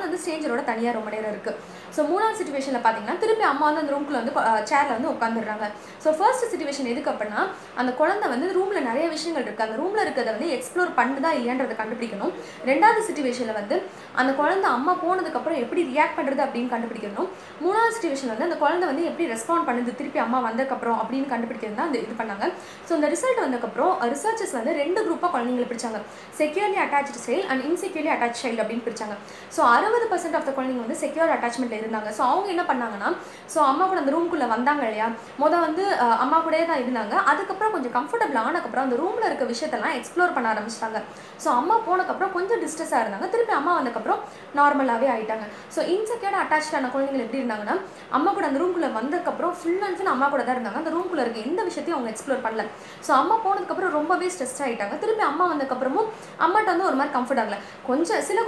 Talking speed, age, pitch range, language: 105 wpm, 20-39, 245-350 Hz, Tamil